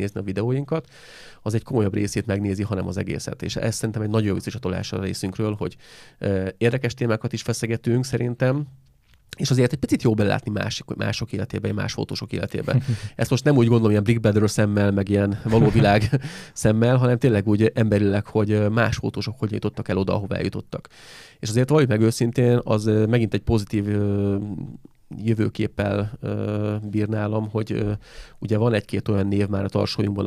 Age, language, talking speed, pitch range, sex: 30-49, Hungarian, 160 wpm, 100-115 Hz, male